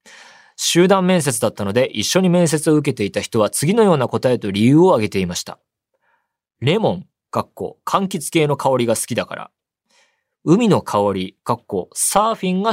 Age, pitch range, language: 20-39, 115-175 Hz, Japanese